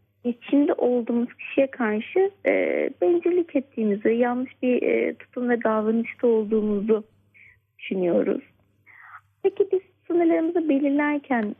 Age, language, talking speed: 30-49, Turkish, 105 wpm